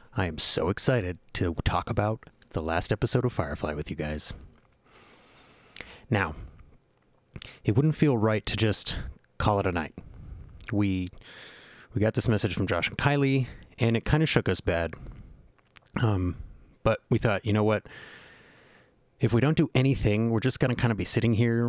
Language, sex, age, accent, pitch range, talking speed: English, male, 30-49, American, 90-120 Hz, 175 wpm